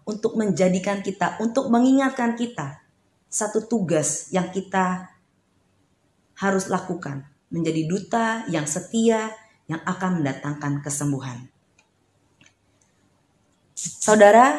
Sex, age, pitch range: female, 30-49, 160-215 Hz